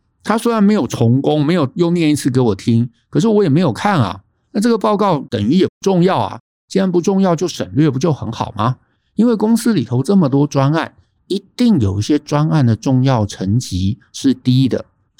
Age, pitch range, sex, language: 50-69, 115-165 Hz, male, Chinese